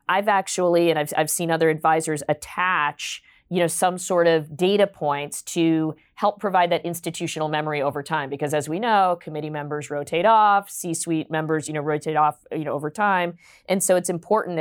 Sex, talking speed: female, 190 wpm